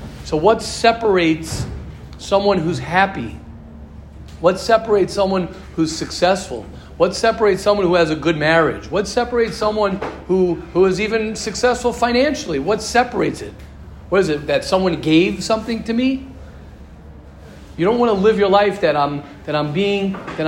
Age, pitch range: 40-59, 170-225 Hz